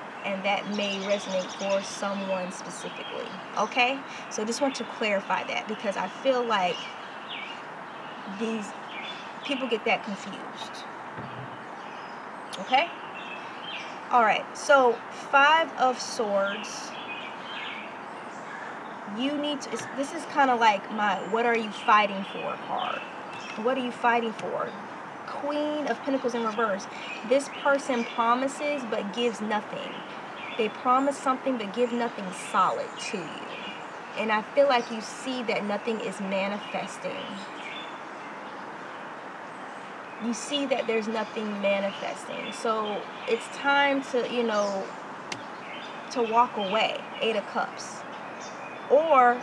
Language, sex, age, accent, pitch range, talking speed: English, female, 20-39, American, 210-265 Hz, 120 wpm